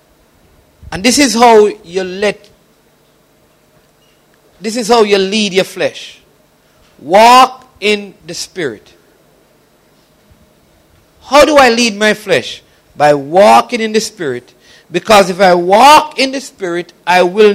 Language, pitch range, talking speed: English, 205-265 Hz, 125 wpm